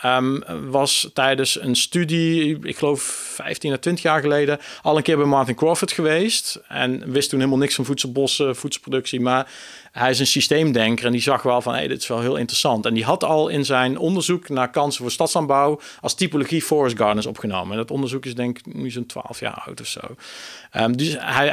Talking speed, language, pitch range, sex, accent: 210 wpm, Dutch, 125-145 Hz, male, Dutch